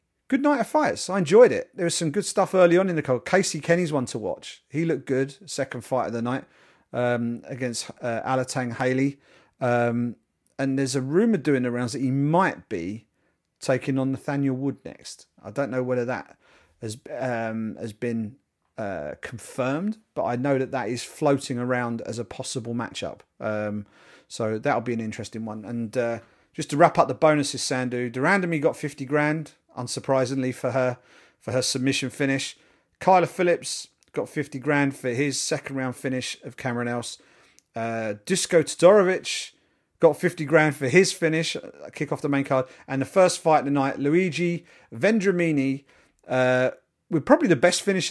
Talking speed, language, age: 180 wpm, English, 40-59